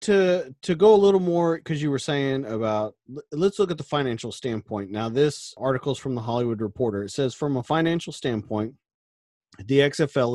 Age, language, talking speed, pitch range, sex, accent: 40-59, English, 190 wpm, 115-165 Hz, male, American